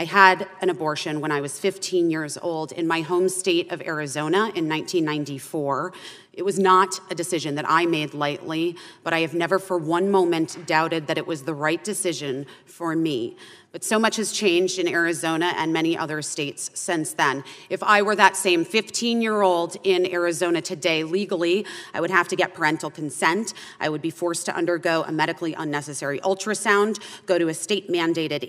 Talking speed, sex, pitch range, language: 185 wpm, female, 160-190 Hz, English